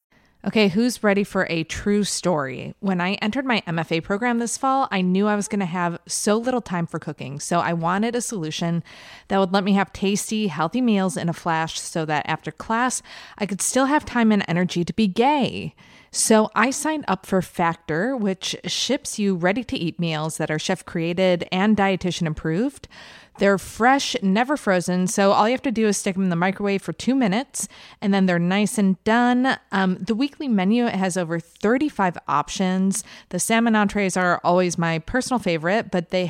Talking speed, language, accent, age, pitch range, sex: 190 wpm, English, American, 20-39, 175-225 Hz, female